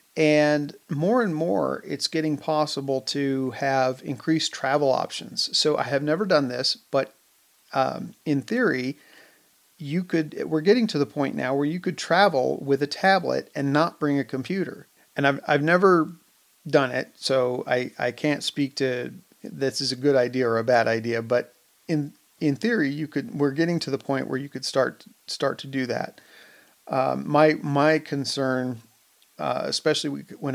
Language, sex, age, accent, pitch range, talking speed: English, male, 40-59, American, 125-145 Hz, 175 wpm